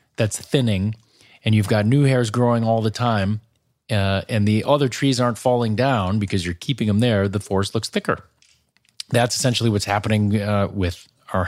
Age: 30-49